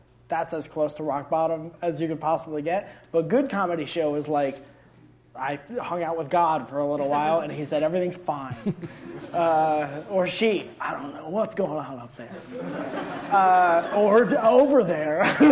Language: English